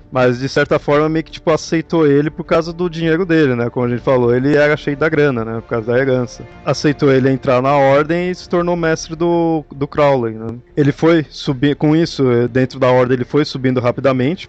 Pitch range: 120-150 Hz